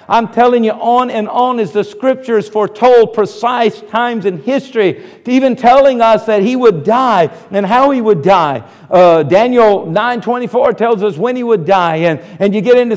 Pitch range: 200-240 Hz